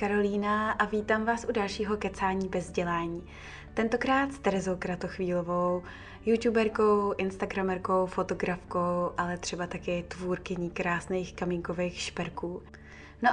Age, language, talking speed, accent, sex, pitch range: 20-39, Czech, 110 wpm, native, female, 180-205 Hz